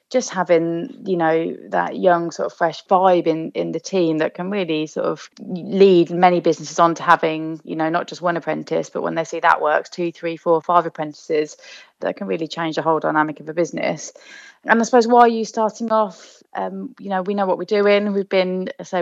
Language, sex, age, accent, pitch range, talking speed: English, female, 20-39, British, 155-180 Hz, 225 wpm